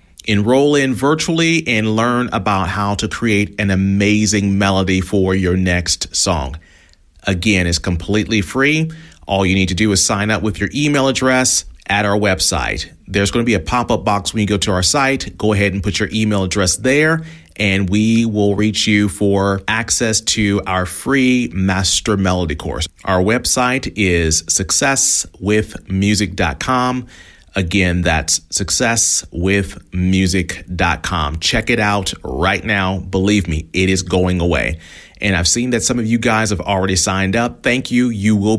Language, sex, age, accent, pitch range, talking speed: English, male, 30-49, American, 95-125 Hz, 160 wpm